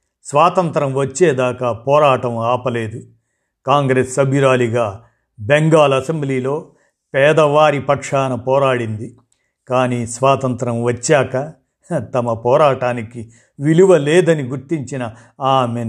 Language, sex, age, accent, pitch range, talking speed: Telugu, male, 50-69, native, 120-150 Hz, 75 wpm